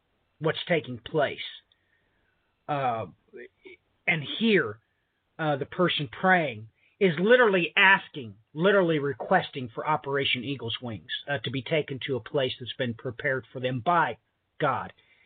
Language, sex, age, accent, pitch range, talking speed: English, male, 40-59, American, 130-170 Hz, 130 wpm